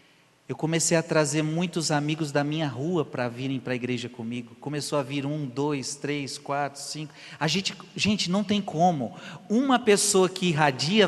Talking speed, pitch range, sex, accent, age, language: 180 wpm, 115-155 Hz, male, Brazilian, 40-59, Portuguese